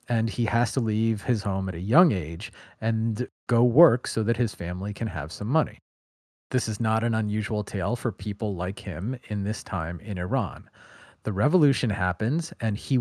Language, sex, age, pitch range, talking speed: English, male, 40-59, 100-130 Hz, 195 wpm